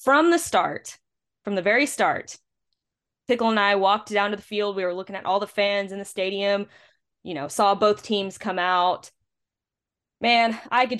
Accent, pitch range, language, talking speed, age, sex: American, 170-205 Hz, English, 190 wpm, 20-39, female